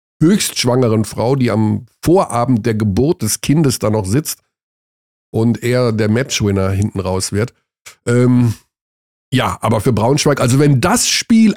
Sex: male